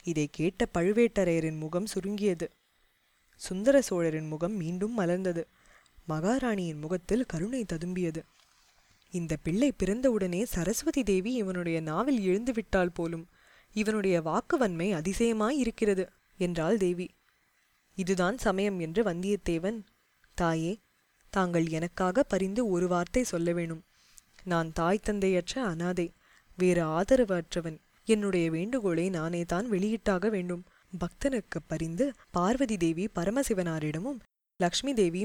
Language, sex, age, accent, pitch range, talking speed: Tamil, female, 20-39, native, 170-220 Hz, 100 wpm